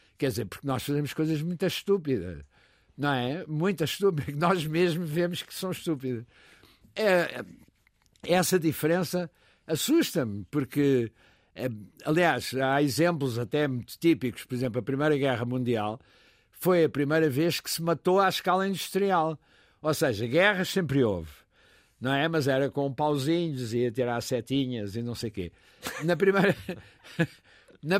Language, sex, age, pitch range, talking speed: Portuguese, male, 60-79, 125-175 Hz, 150 wpm